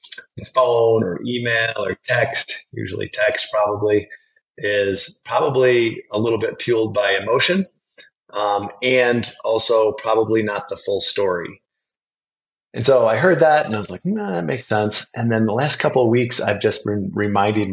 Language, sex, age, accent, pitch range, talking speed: English, male, 30-49, American, 105-120 Hz, 160 wpm